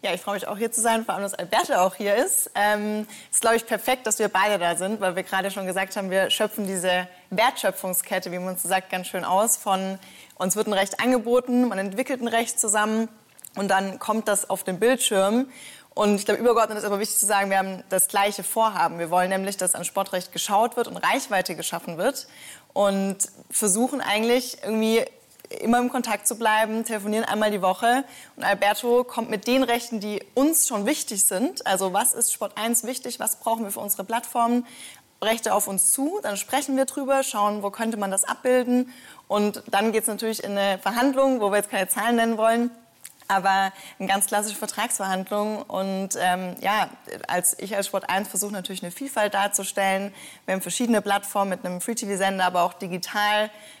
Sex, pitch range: female, 195-230 Hz